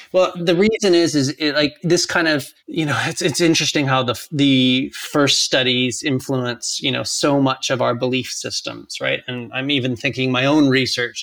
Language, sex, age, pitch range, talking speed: English, male, 20-39, 125-145 Hz, 200 wpm